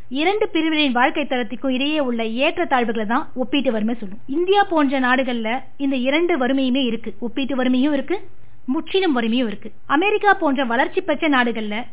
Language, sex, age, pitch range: Tamil, female, 20-39, 240-290 Hz